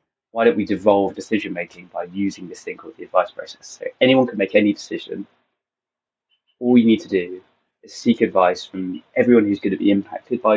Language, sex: English, male